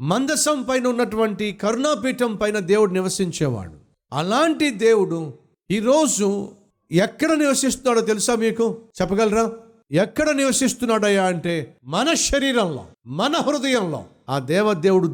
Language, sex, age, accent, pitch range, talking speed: Telugu, male, 50-69, native, 150-225 Hz, 95 wpm